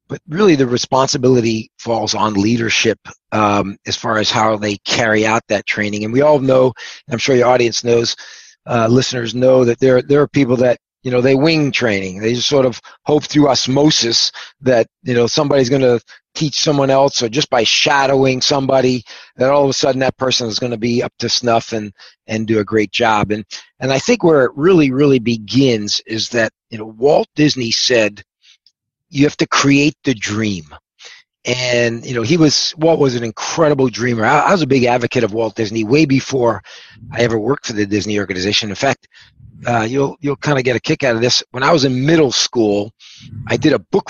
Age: 40-59